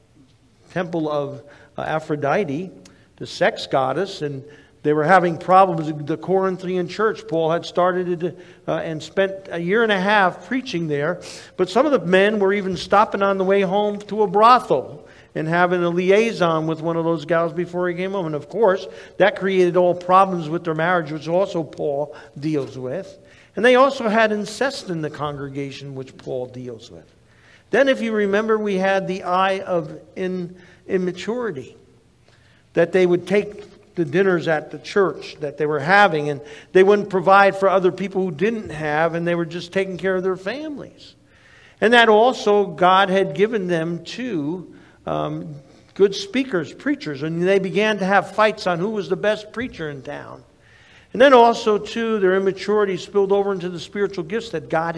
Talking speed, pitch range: 180 wpm, 160-200 Hz